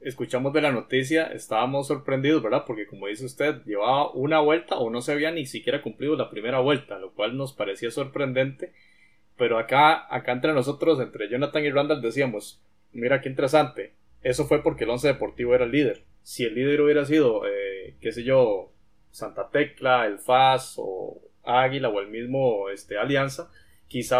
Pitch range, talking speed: 120-155 Hz, 180 wpm